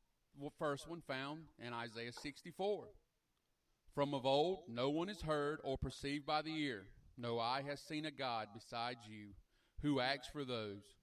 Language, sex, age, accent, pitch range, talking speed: English, male, 40-59, American, 115-160 Hz, 170 wpm